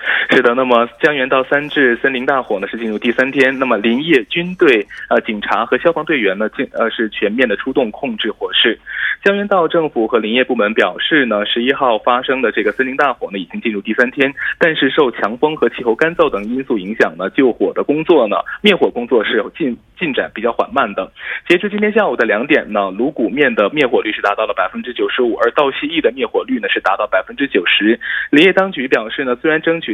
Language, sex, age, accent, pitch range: Korean, male, 20-39, Chinese, 130-205 Hz